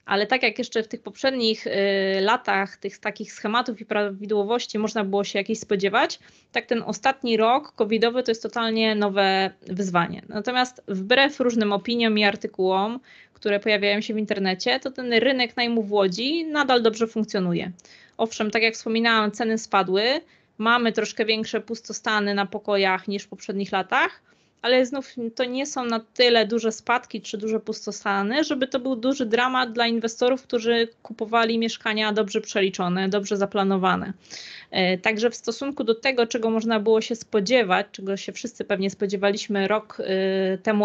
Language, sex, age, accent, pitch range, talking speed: Polish, female, 20-39, native, 200-230 Hz, 155 wpm